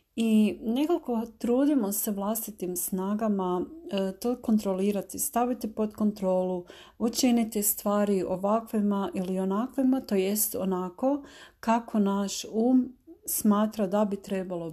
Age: 40-59